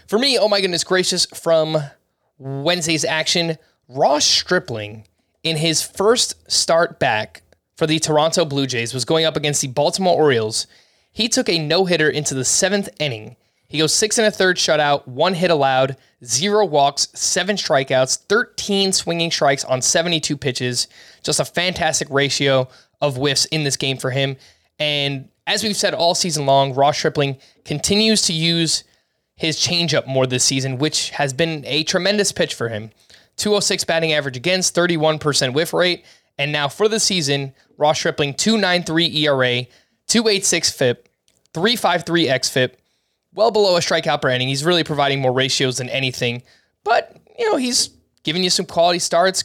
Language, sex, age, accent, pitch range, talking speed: English, male, 20-39, American, 135-180 Hz, 160 wpm